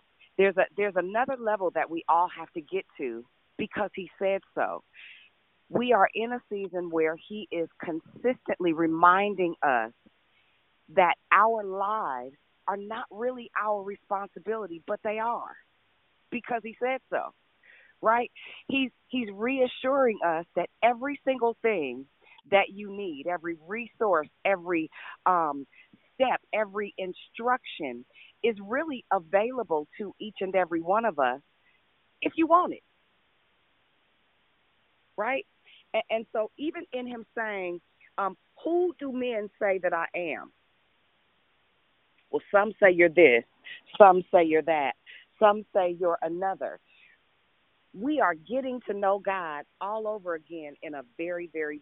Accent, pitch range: American, 175-235 Hz